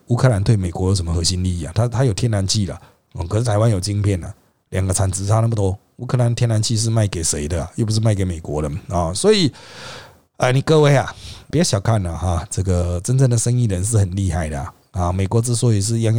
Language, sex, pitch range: Chinese, male, 105-145 Hz